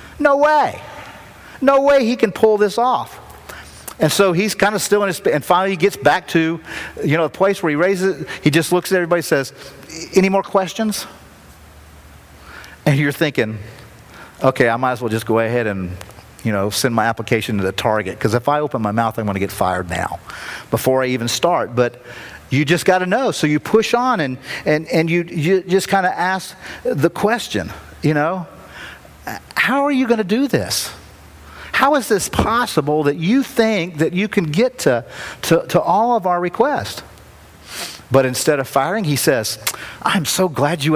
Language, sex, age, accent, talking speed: English, male, 40-59, American, 195 wpm